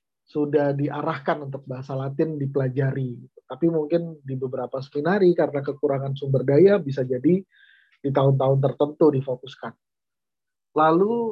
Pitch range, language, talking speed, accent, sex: 135-165 Hz, Indonesian, 115 wpm, native, male